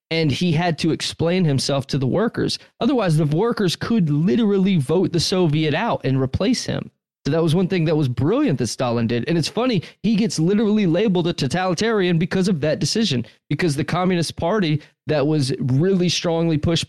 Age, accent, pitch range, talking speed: 20-39, American, 140-180 Hz, 190 wpm